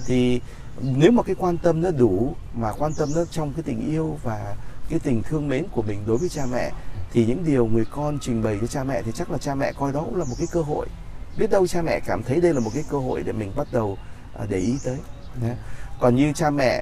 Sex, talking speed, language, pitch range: male, 260 wpm, Vietnamese, 115-150 Hz